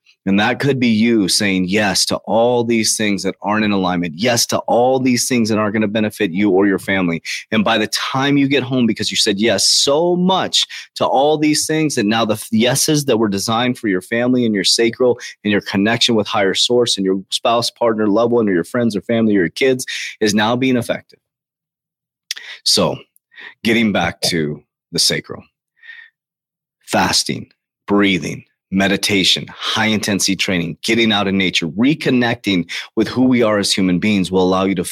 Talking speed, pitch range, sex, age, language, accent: 190 wpm, 100-125 Hz, male, 30-49, English, American